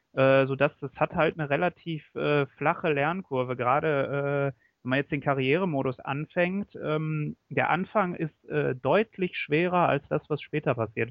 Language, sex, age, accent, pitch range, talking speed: German, male, 30-49, German, 135-155 Hz, 150 wpm